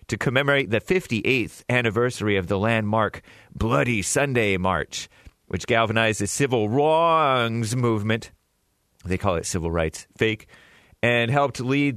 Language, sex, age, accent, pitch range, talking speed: English, male, 30-49, American, 105-150 Hz, 130 wpm